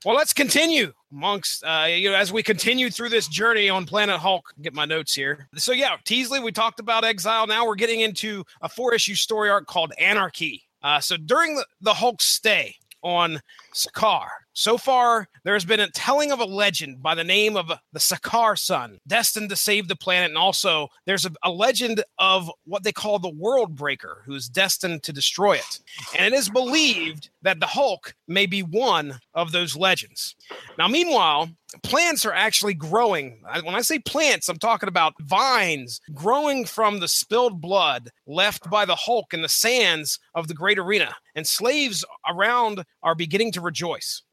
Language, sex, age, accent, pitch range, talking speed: English, male, 30-49, American, 165-225 Hz, 185 wpm